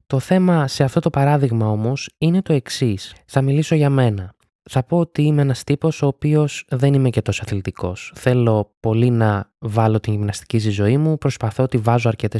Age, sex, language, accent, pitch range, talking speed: 20-39, male, Greek, native, 110-140 Hz, 195 wpm